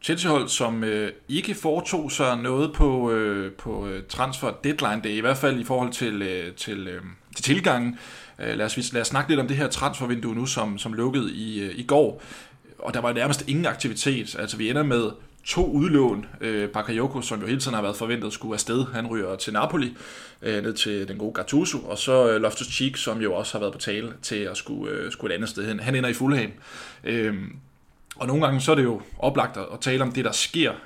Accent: native